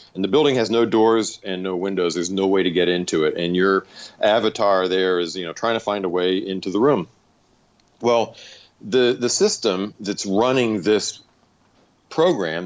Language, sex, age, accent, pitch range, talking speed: English, male, 40-59, American, 90-115 Hz, 185 wpm